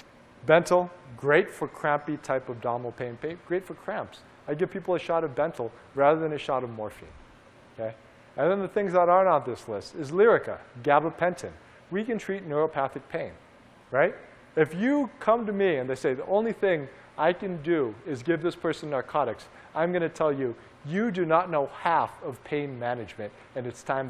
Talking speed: 195 wpm